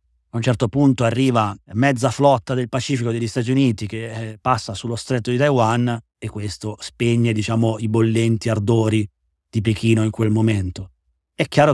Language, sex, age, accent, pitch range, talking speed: Italian, male, 30-49, native, 110-135 Hz, 165 wpm